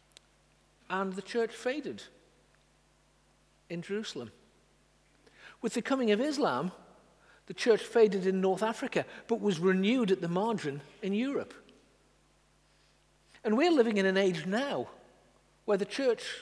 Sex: male